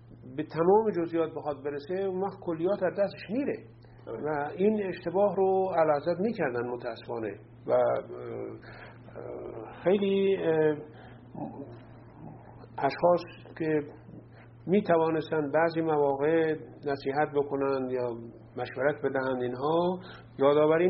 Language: English